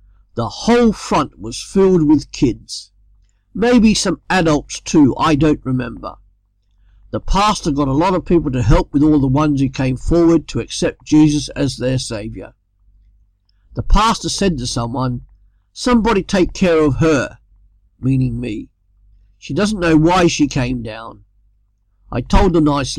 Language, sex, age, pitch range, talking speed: English, male, 50-69, 105-165 Hz, 155 wpm